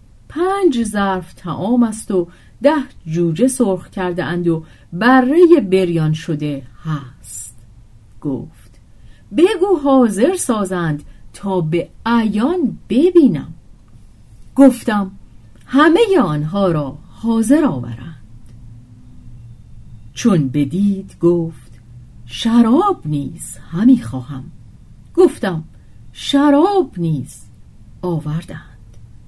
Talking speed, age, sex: 80 wpm, 40-59, female